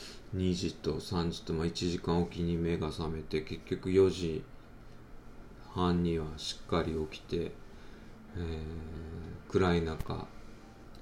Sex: male